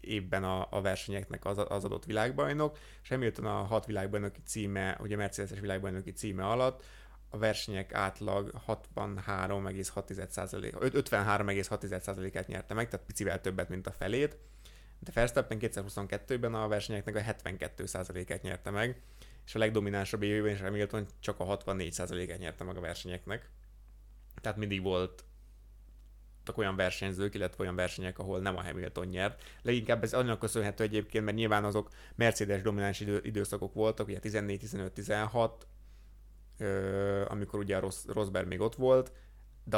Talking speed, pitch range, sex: 145 wpm, 95-110 Hz, male